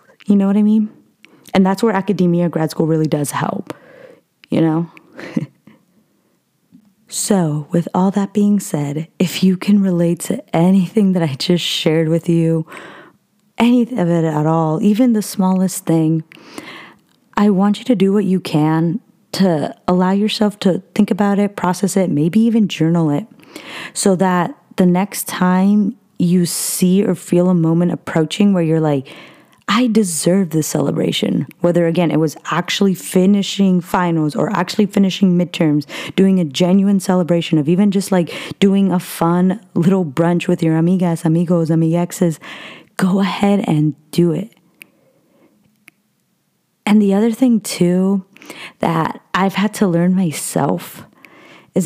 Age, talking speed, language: 20-39, 150 wpm, English